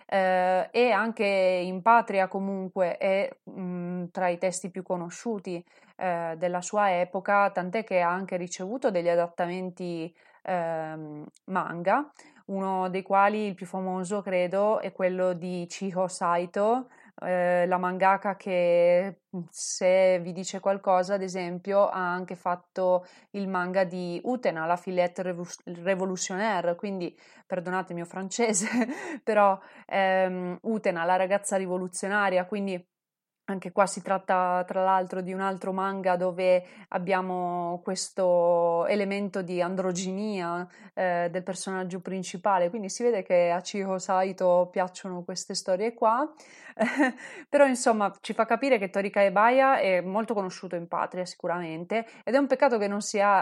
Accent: native